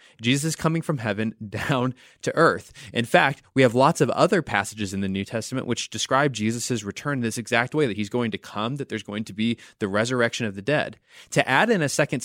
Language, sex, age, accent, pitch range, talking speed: English, male, 20-39, American, 115-155 Hz, 235 wpm